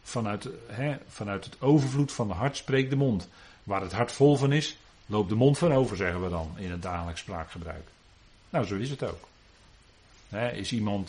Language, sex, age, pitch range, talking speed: Dutch, male, 40-59, 95-125 Hz, 200 wpm